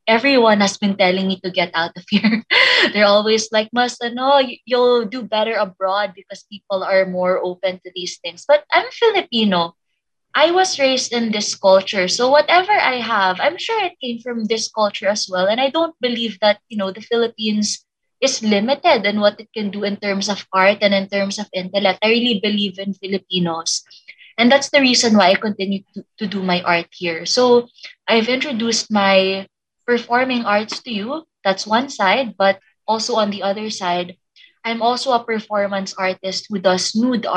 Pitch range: 190-230 Hz